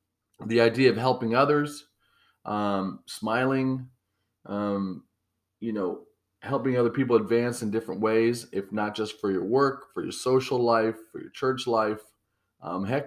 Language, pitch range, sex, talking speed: English, 105-125 Hz, male, 140 wpm